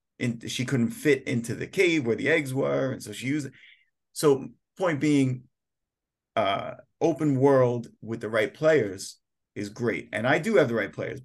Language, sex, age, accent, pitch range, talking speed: English, male, 30-49, American, 115-150 Hz, 185 wpm